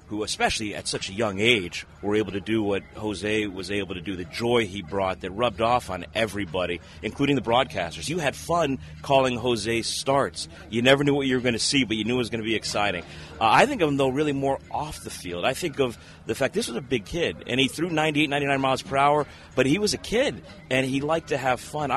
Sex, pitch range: male, 100-130 Hz